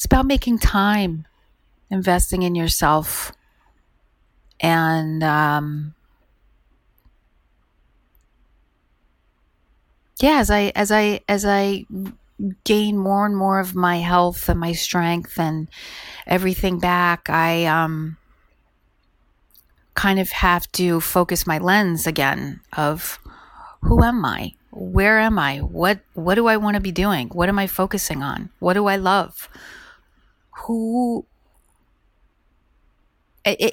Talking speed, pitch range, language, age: 115 wpm, 160-205 Hz, English, 40-59